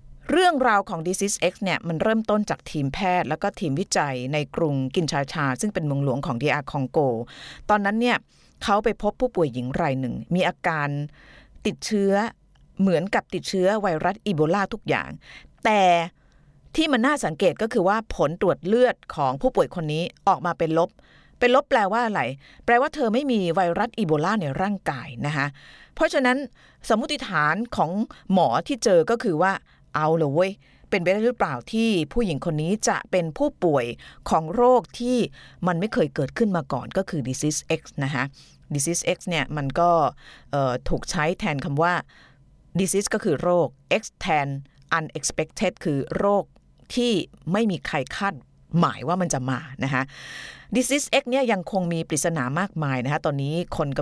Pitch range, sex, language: 145-210 Hz, female, Thai